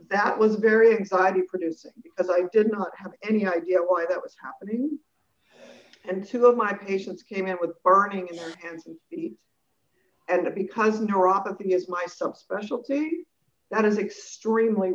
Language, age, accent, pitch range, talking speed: English, 50-69, American, 185-245 Hz, 155 wpm